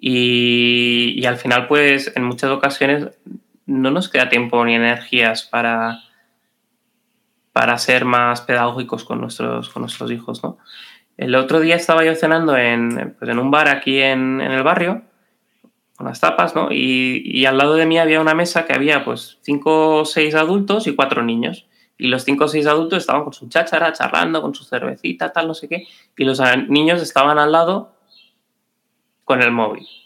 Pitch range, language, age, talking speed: 125-165 Hz, Spanish, 20-39, 180 wpm